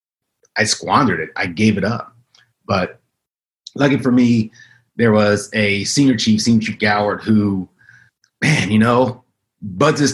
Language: English